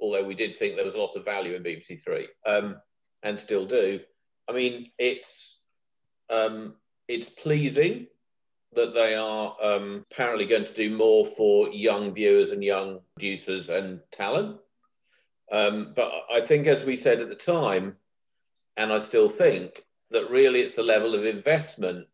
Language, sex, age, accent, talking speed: English, male, 40-59, British, 160 wpm